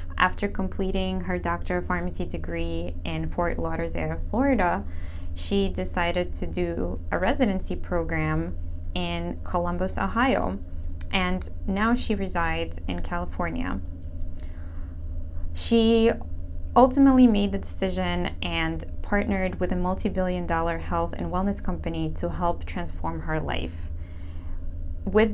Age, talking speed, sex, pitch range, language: 20-39, 115 wpm, female, 80-100 Hz, English